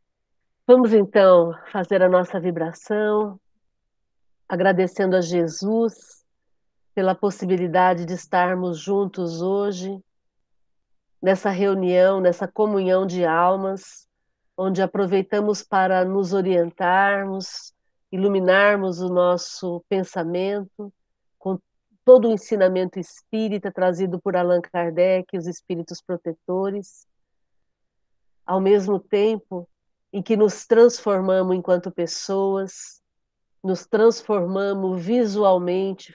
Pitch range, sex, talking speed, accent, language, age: 180-200 Hz, female, 90 wpm, Brazilian, Portuguese, 50-69